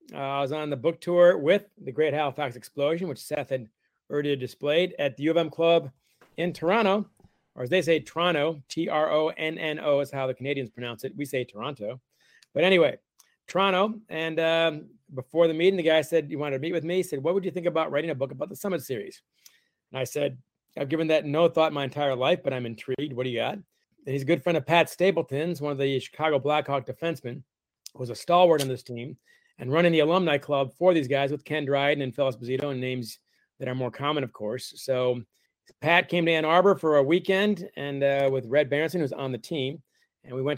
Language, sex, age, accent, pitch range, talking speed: English, male, 40-59, American, 135-165 Hz, 230 wpm